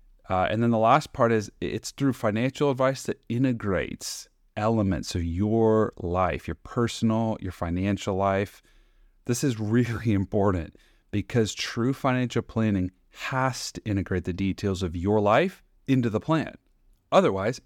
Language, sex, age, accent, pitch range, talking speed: English, male, 30-49, American, 95-130 Hz, 145 wpm